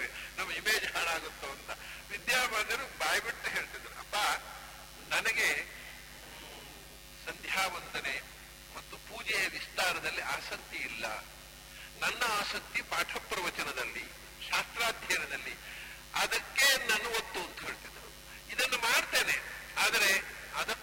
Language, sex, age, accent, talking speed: English, male, 60-79, Indian, 105 wpm